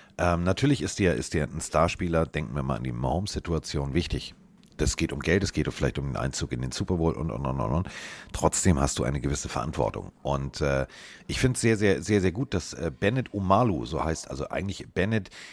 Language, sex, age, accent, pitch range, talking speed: German, male, 40-59, German, 70-95 Hz, 230 wpm